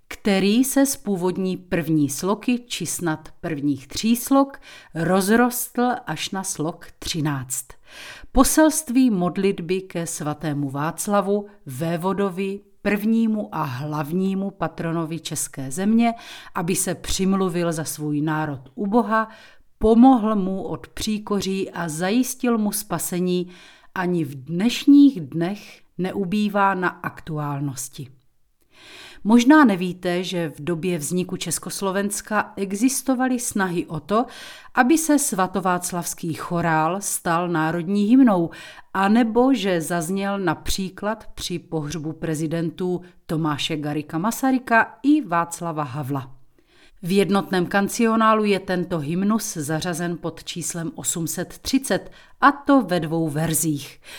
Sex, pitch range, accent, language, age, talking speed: female, 165-220 Hz, native, Czech, 40-59, 105 wpm